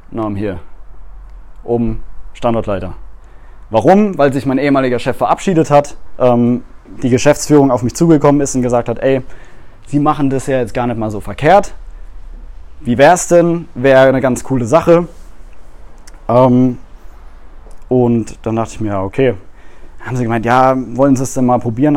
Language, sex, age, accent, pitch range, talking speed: German, male, 20-39, German, 115-140 Hz, 165 wpm